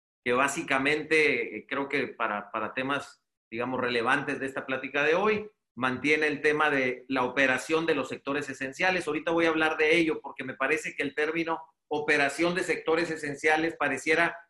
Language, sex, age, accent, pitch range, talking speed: Spanish, male, 40-59, Mexican, 130-160 Hz, 170 wpm